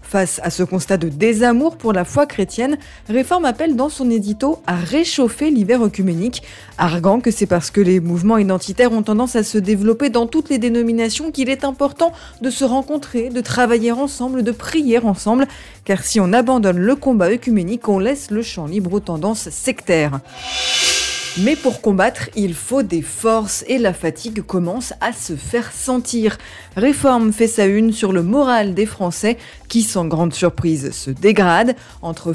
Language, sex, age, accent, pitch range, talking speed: French, female, 20-39, French, 180-245 Hz, 175 wpm